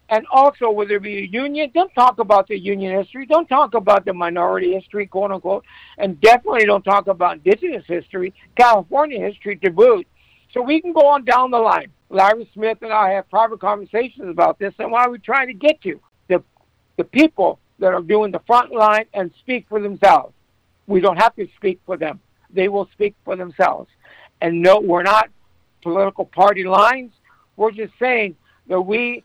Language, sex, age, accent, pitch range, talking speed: English, male, 60-79, American, 190-225 Hz, 190 wpm